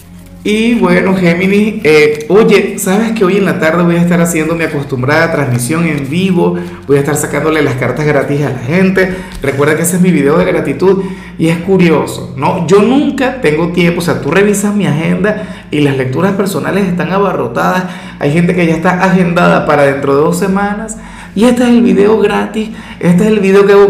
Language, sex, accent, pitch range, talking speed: Spanish, male, Venezuelan, 145-195 Hz, 205 wpm